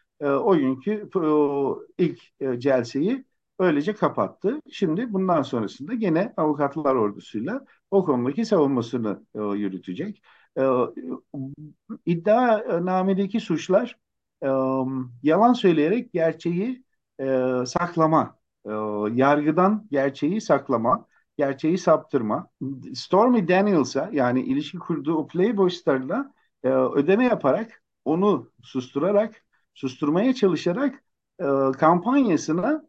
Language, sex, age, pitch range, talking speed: Turkish, male, 50-69, 130-200 Hz, 75 wpm